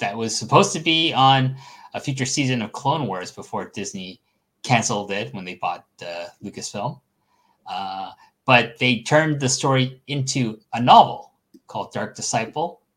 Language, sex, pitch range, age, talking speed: English, male, 105-135 Hz, 30-49, 155 wpm